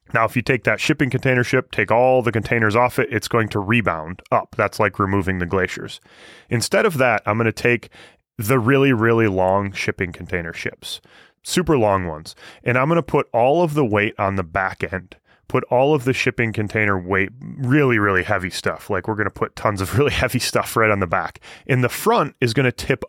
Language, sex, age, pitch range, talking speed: English, male, 20-39, 100-125 Hz, 215 wpm